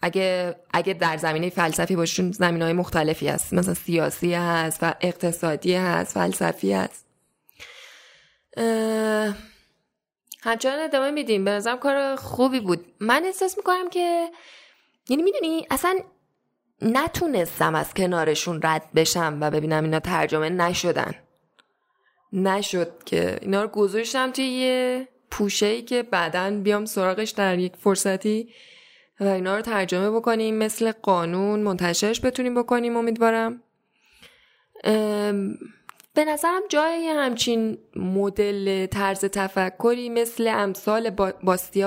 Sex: female